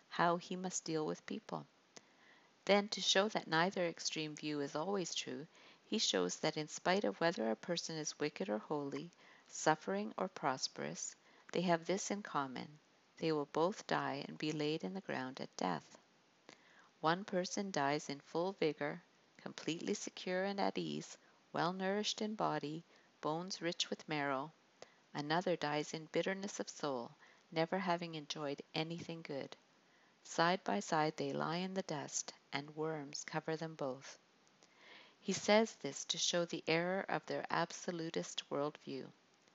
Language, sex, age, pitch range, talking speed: English, female, 50-69, 150-185 Hz, 160 wpm